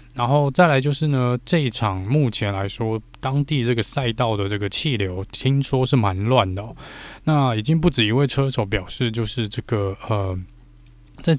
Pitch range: 100-130 Hz